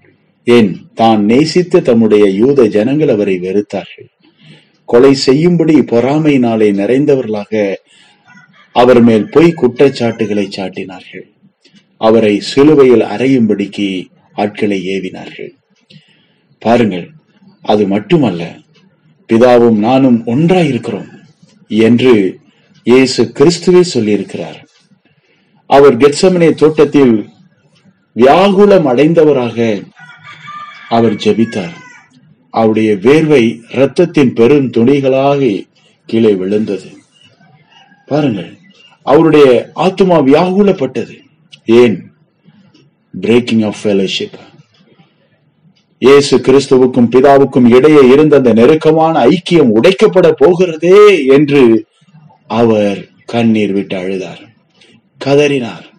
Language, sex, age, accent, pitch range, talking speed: Tamil, male, 30-49, native, 110-160 Hz, 70 wpm